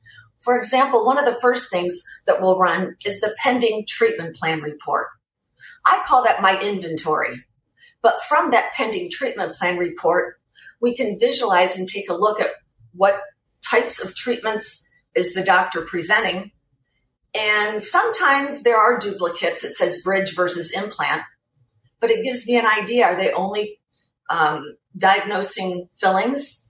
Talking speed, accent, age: 150 wpm, American, 40-59